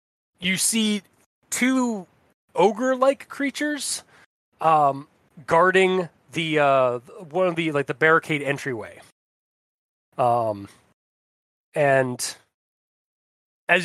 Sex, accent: male, American